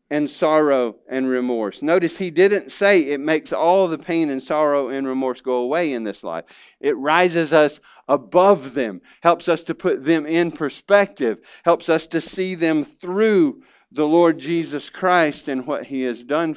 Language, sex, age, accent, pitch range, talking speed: English, male, 50-69, American, 120-165 Hz, 175 wpm